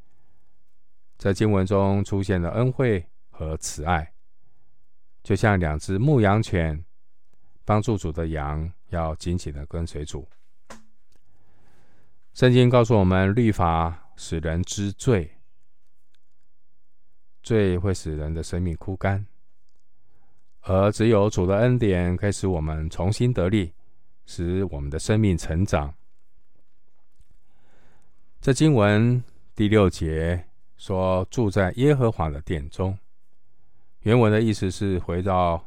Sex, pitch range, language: male, 85-110 Hz, Chinese